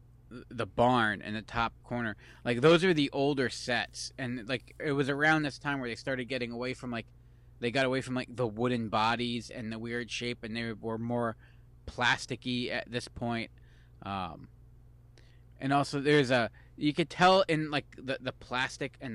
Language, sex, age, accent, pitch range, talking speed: English, male, 20-39, American, 115-125 Hz, 190 wpm